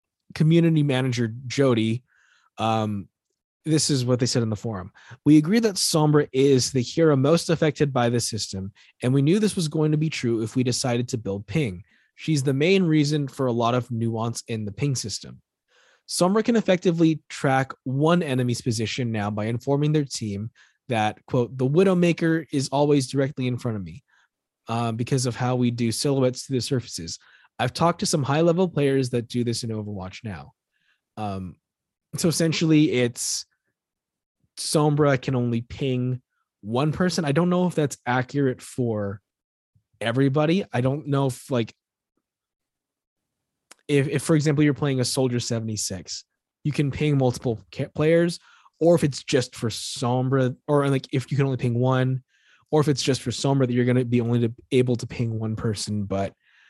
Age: 20-39